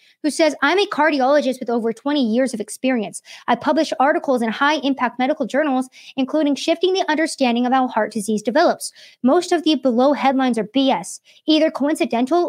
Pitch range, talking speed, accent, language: 245-325 Hz, 175 wpm, American, English